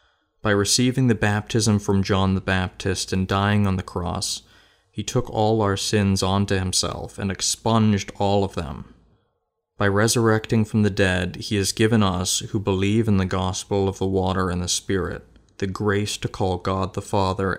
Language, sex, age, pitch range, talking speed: English, male, 20-39, 95-105 Hz, 175 wpm